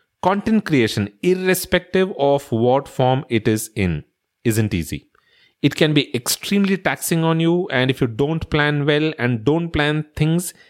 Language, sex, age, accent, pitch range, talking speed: English, male, 40-59, Indian, 120-170 Hz, 155 wpm